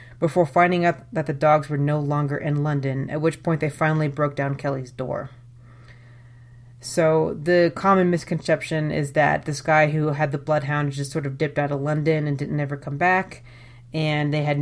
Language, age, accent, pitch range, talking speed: English, 30-49, American, 140-165 Hz, 195 wpm